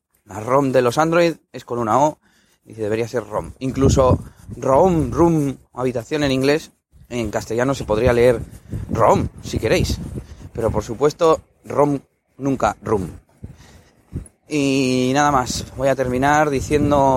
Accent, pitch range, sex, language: Spanish, 115-145 Hz, male, Spanish